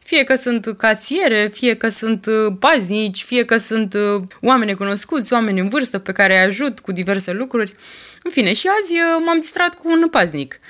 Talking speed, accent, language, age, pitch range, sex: 180 wpm, native, Romanian, 20-39, 195-275 Hz, female